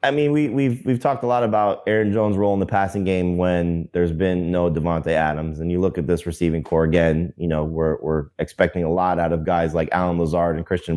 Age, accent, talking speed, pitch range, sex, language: 20-39, American, 245 wpm, 85-110 Hz, male, English